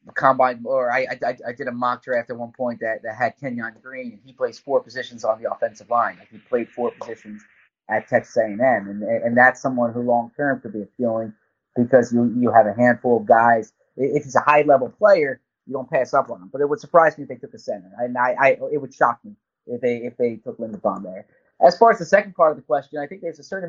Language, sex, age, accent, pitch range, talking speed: English, male, 30-49, American, 120-145 Hz, 265 wpm